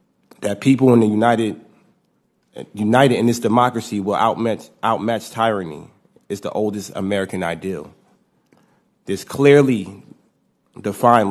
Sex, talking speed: male, 110 wpm